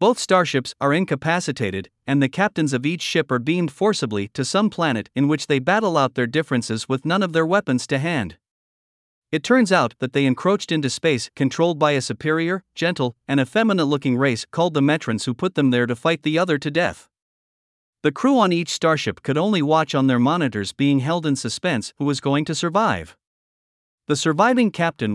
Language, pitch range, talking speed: English, 130-170 Hz, 200 wpm